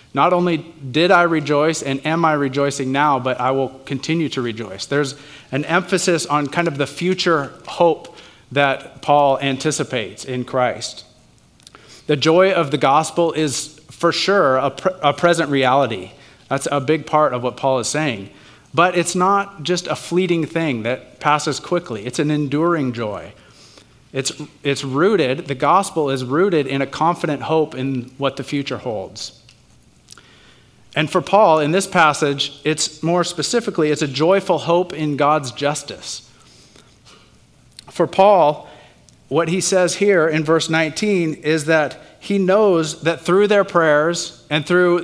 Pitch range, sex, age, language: 135-170 Hz, male, 30-49, English